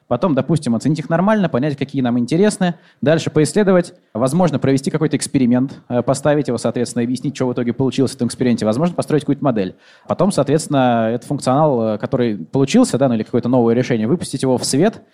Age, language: 20-39, Russian